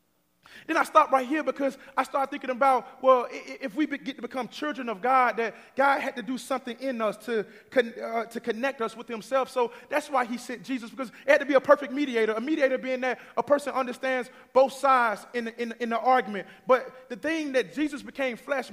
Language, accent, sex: English, American, male